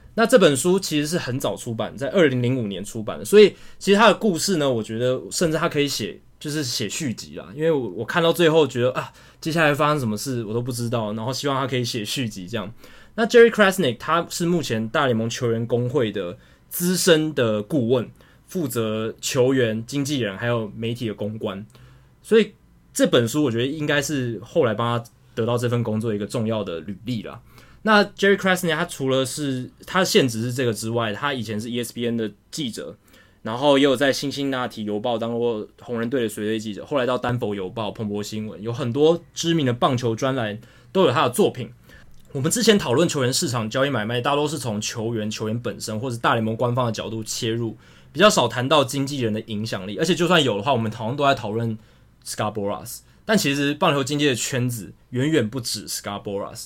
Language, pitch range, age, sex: Chinese, 110-150 Hz, 20-39, male